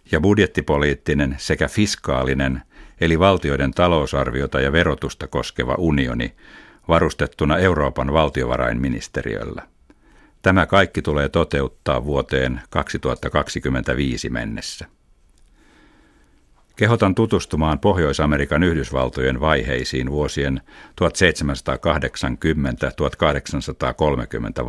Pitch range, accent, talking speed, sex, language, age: 70-85 Hz, native, 70 wpm, male, Finnish, 60-79